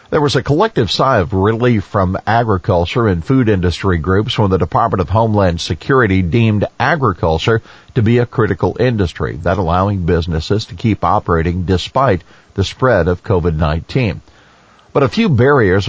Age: 50-69